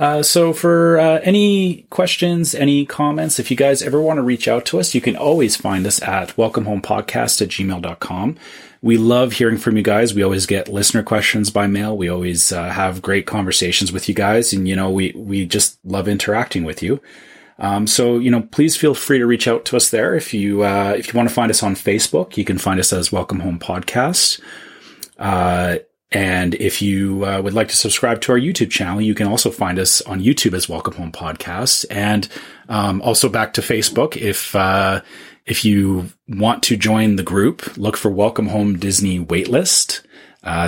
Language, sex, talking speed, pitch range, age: English, male, 200 wpm, 95-115 Hz, 30-49